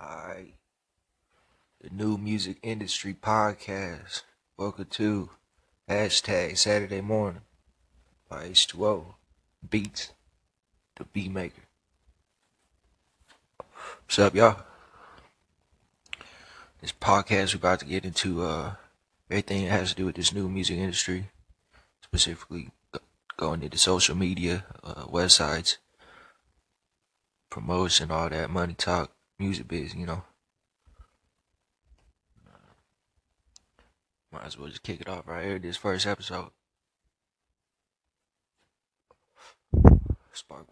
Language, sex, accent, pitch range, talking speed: English, male, American, 80-100 Hz, 100 wpm